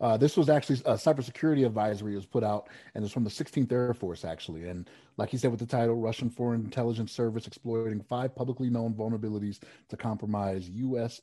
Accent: American